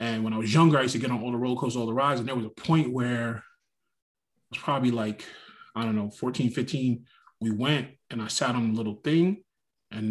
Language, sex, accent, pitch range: English, male, American, 120-150 Hz